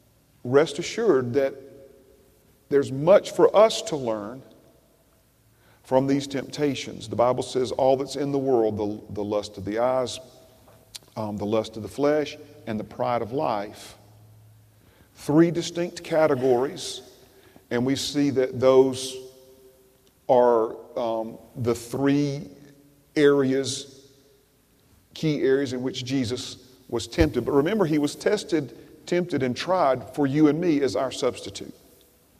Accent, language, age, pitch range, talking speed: American, English, 40-59, 115-145 Hz, 135 wpm